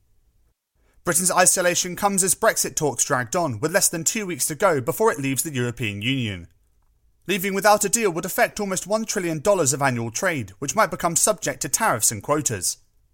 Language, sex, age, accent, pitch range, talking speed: English, male, 30-49, British, 130-190 Hz, 185 wpm